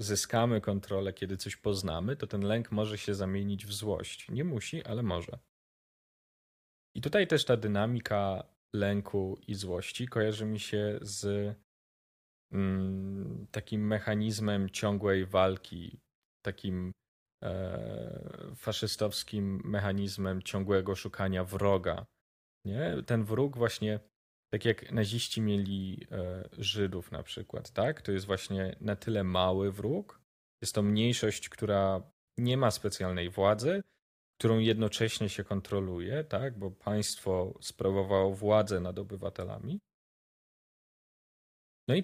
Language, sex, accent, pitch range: Polish, male, native, 95-110 Hz